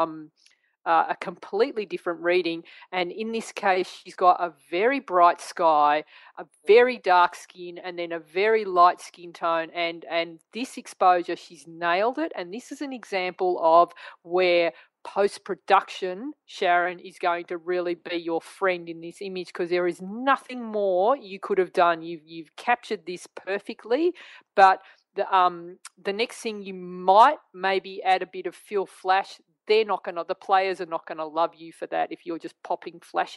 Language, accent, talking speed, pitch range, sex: English, Australian, 185 wpm, 170-195 Hz, female